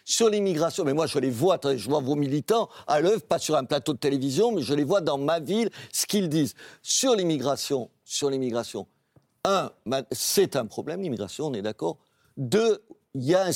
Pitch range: 135-180 Hz